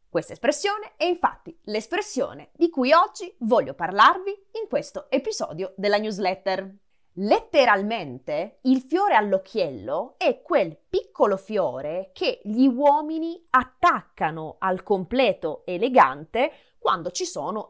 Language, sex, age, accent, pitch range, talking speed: Italian, female, 20-39, native, 210-345 Hz, 110 wpm